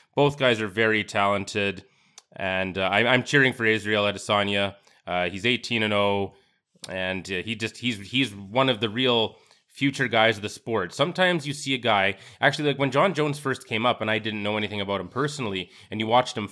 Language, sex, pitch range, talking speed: English, male, 100-120 Hz, 205 wpm